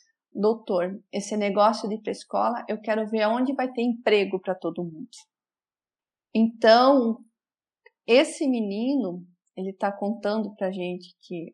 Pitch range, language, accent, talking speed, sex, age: 185-240 Hz, Portuguese, Brazilian, 130 wpm, female, 40-59